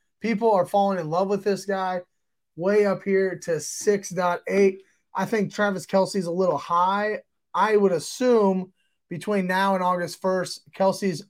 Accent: American